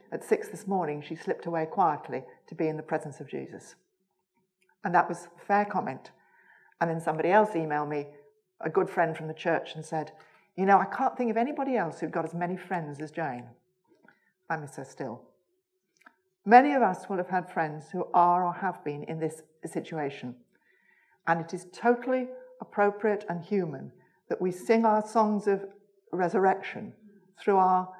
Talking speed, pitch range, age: 185 wpm, 160-200 Hz, 40-59